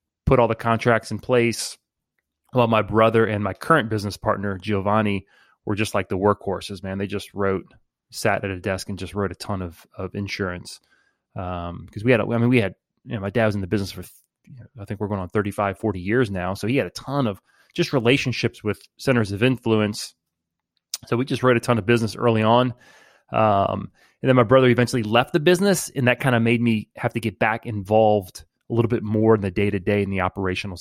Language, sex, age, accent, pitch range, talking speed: English, male, 30-49, American, 100-120 Hz, 235 wpm